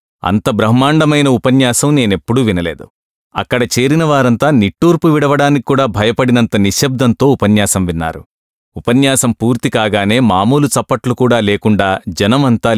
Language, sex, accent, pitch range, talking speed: English, male, Indian, 100-130 Hz, 115 wpm